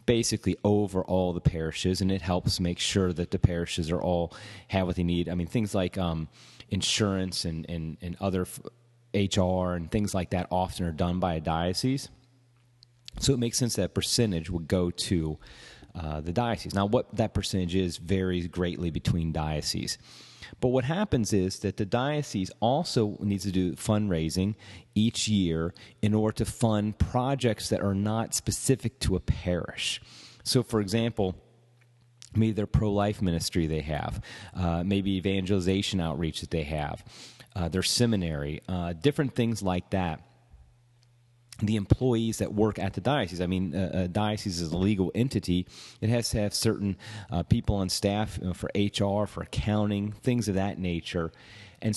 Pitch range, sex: 90-115 Hz, male